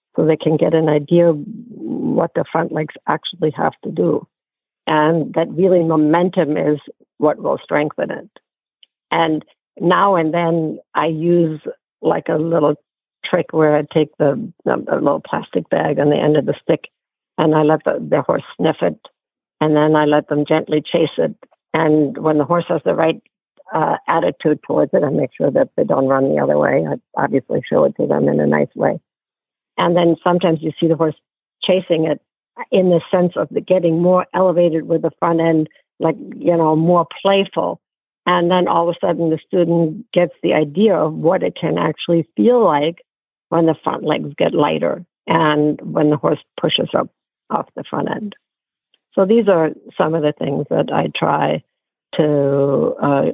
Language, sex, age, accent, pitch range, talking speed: English, female, 60-79, American, 150-170 Hz, 190 wpm